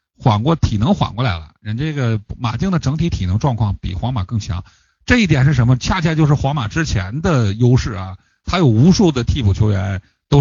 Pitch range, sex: 110-155 Hz, male